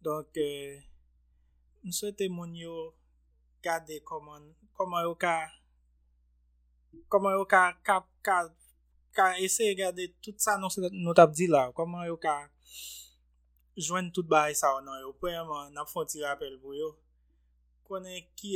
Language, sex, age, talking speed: English, male, 20-39, 120 wpm